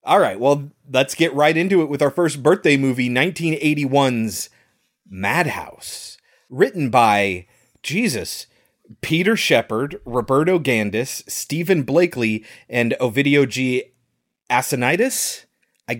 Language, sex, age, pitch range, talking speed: English, male, 30-49, 110-155 Hz, 110 wpm